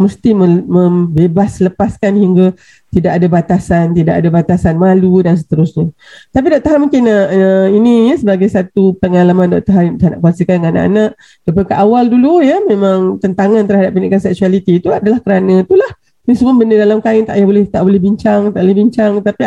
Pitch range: 180-245 Hz